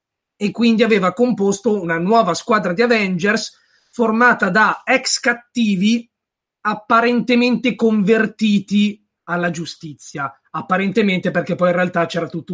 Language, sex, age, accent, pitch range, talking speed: Italian, male, 20-39, native, 170-210 Hz, 115 wpm